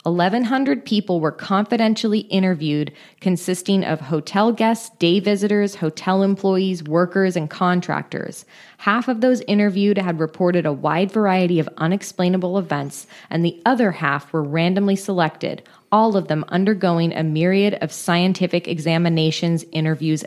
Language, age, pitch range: English, 20-39, 165-205 Hz